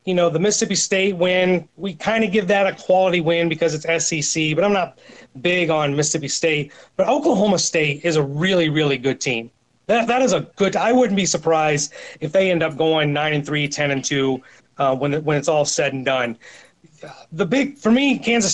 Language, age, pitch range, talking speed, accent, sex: English, 30-49, 155-195 Hz, 210 wpm, American, male